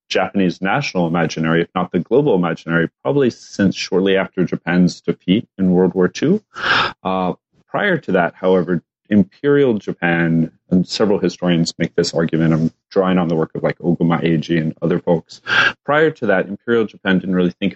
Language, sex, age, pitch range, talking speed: English, male, 30-49, 85-100 Hz, 170 wpm